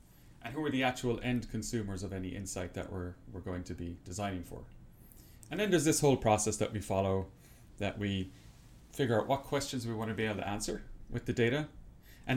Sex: male